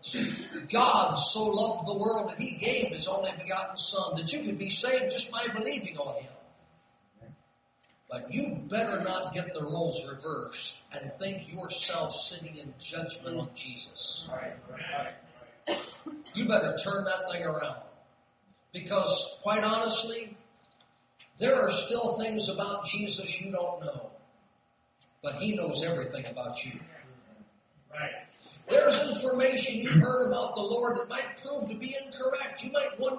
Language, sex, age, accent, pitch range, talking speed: English, male, 50-69, American, 170-225 Hz, 145 wpm